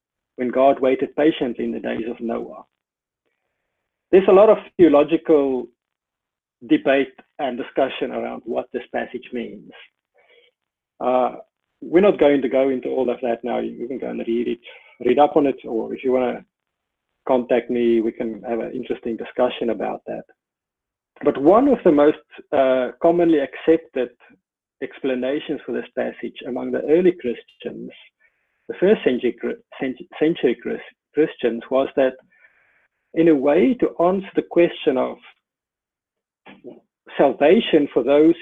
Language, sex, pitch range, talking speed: English, male, 125-160 Hz, 145 wpm